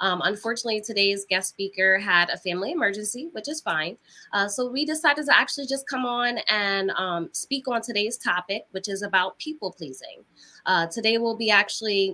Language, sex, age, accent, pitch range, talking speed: English, female, 20-39, American, 190-235 Hz, 175 wpm